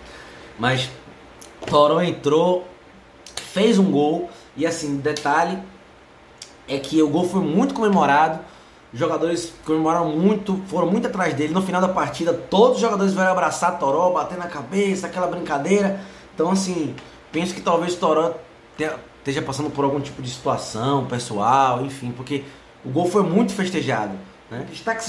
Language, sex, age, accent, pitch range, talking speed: Portuguese, male, 20-39, Brazilian, 145-180 Hz, 145 wpm